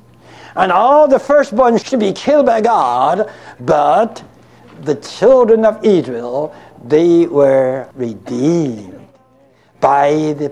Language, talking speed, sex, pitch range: English, 110 wpm, male, 125-190 Hz